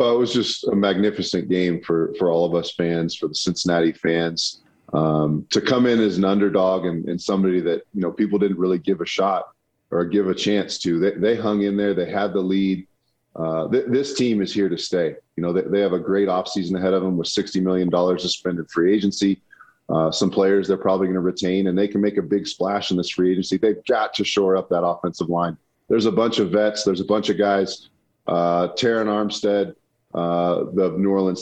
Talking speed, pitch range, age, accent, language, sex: 230 wpm, 90-105 Hz, 30-49, American, English, male